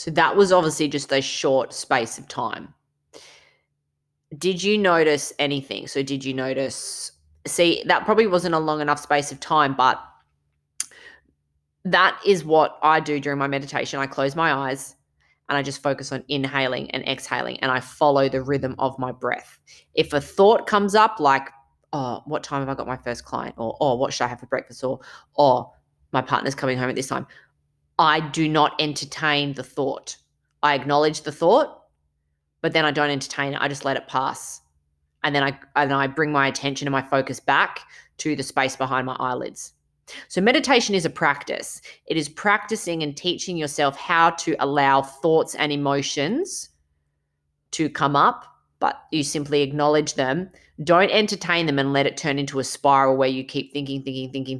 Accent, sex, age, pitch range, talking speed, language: Australian, female, 20-39, 130-150 Hz, 185 wpm, English